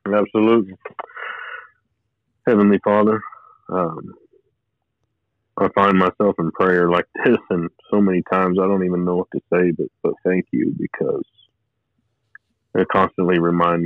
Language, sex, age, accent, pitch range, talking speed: English, male, 30-49, American, 90-110 Hz, 130 wpm